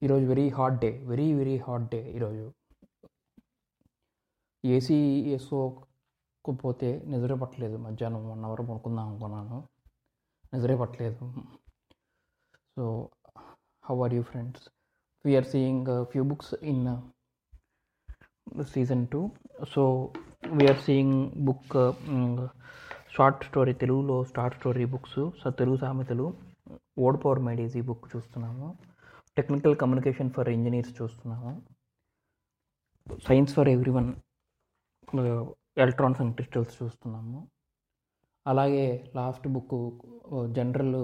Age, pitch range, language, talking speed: 20-39, 120-135 Hz, Telugu, 95 wpm